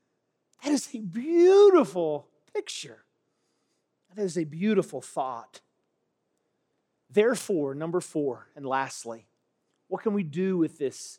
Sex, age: male, 40-59